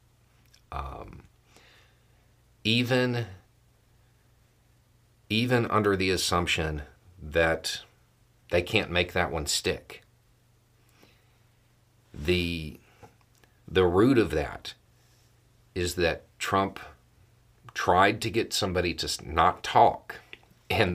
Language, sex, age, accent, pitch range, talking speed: English, male, 40-59, American, 85-120 Hz, 85 wpm